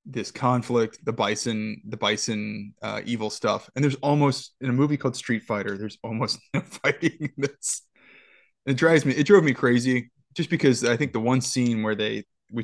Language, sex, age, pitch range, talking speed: English, male, 20-39, 105-130 Hz, 195 wpm